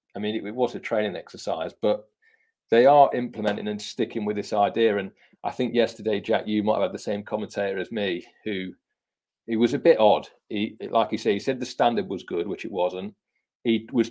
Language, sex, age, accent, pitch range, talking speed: English, male, 40-59, British, 110-150 Hz, 220 wpm